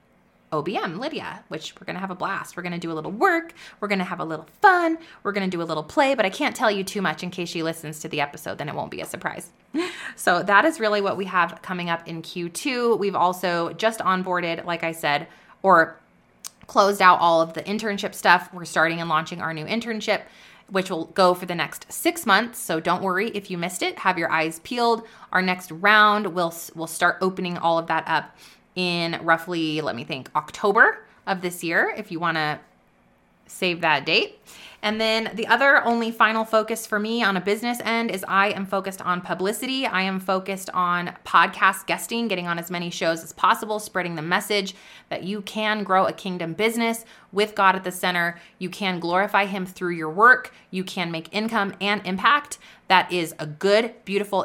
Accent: American